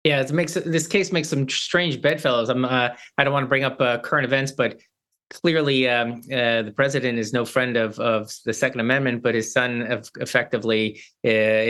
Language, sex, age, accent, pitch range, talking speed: English, male, 30-49, American, 115-150 Hz, 205 wpm